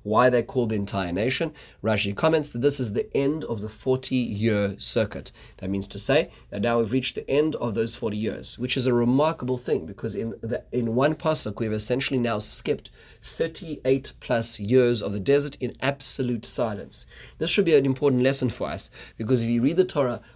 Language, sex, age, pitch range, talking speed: English, male, 30-49, 110-135 Hz, 205 wpm